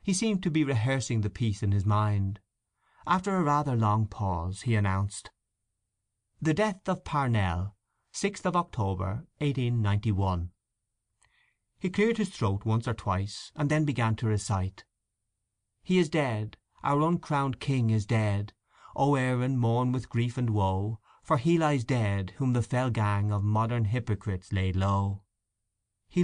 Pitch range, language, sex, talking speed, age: 105-130 Hz, English, male, 150 wpm, 30-49